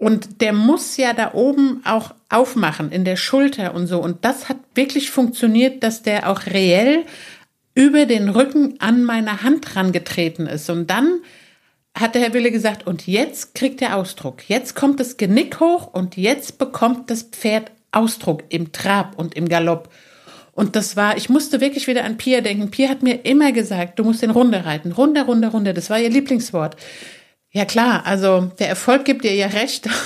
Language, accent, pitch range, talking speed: German, German, 195-250 Hz, 190 wpm